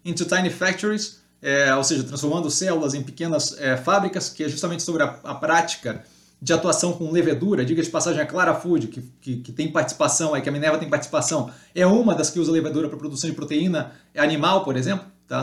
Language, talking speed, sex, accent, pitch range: Portuguese, 210 wpm, male, Brazilian, 135-170 Hz